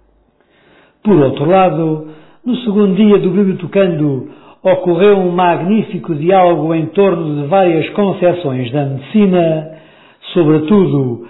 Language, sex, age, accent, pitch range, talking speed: Portuguese, male, 50-69, Portuguese, 155-190 Hz, 110 wpm